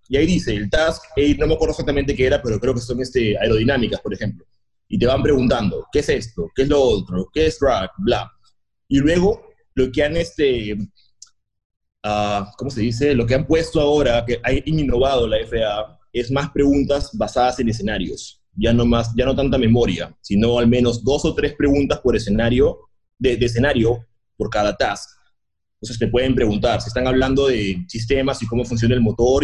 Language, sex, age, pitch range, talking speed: Spanish, male, 30-49, 115-150 Hz, 200 wpm